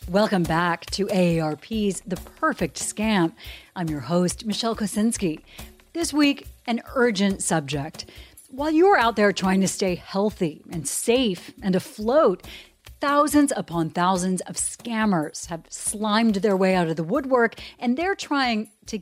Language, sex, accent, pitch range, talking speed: English, female, American, 175-235 Hz, 145 wpm